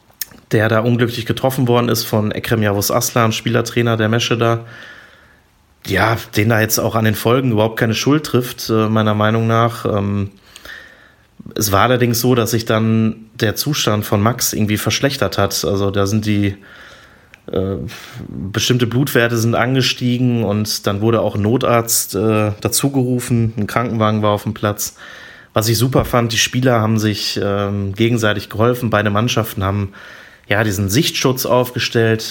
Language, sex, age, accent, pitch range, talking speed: German, male, 30-49, German, 105-120 Hz, 150 wpm